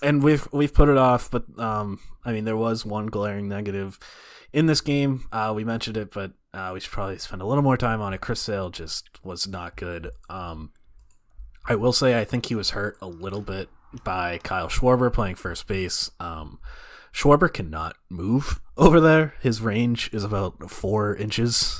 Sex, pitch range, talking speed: male, 90-120 Hz, 195 wpm